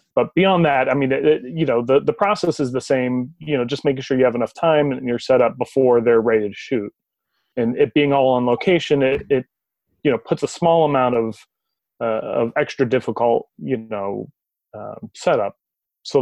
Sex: male